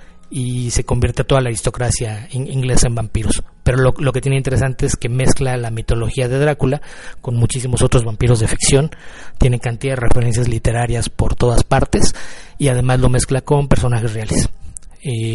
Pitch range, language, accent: 115-135 Hz, Spanish, Mexican